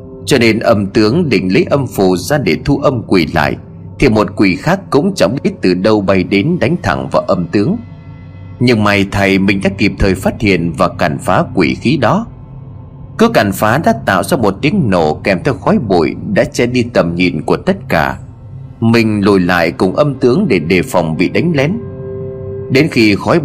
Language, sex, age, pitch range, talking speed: Vietnamese, male, 30-49, 90-120 Hz, 205 wpm